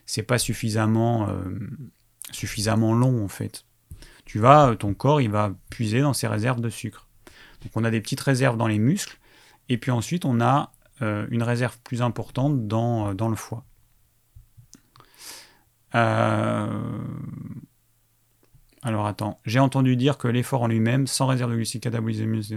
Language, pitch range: French, 110-130 Hz